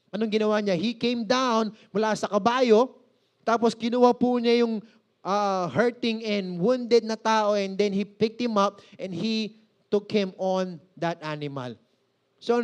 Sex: male